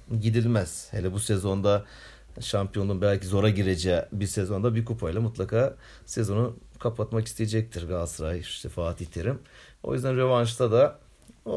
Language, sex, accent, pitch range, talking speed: Turkish, male, native, 95-115 Hz, 130 wpm